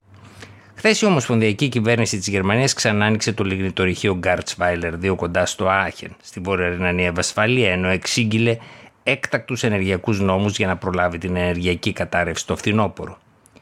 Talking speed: 140 wpm